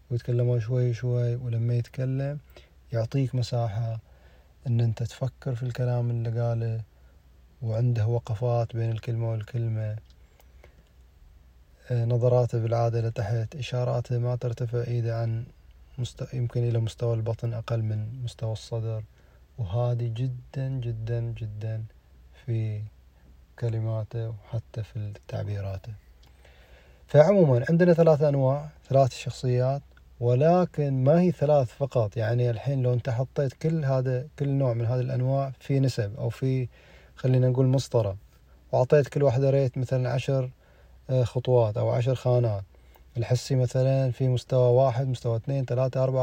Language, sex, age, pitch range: Arabic, male, 30-49, 115-135 Hz